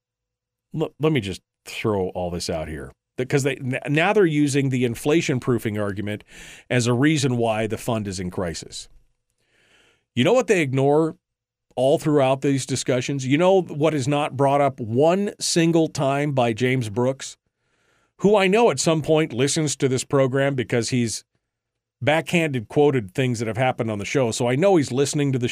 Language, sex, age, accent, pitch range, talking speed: English, male, 40-59, American, 120-150 Hz, 180 wpm